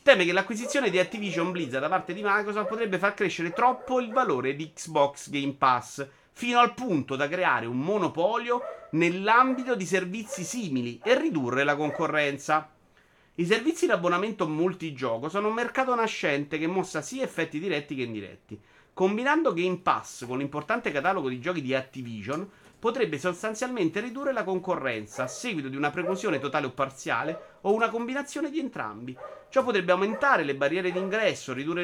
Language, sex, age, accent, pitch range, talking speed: Italian, male, 30-49, native, 150-230 Hz, 160 wpm